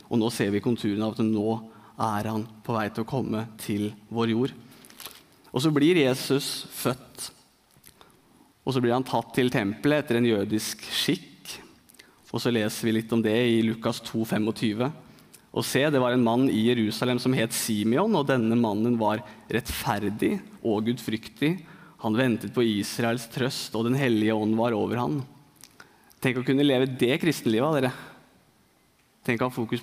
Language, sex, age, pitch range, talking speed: English, male, 20-39, 110-130 Hz, 170 wpm